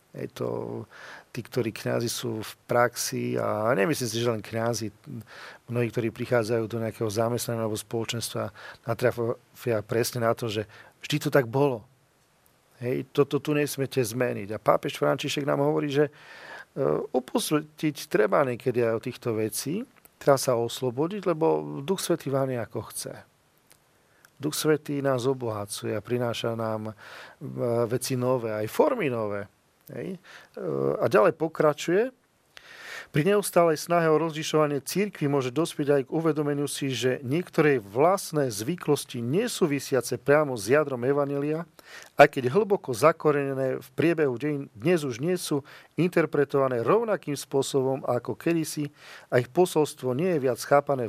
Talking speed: 135 wpm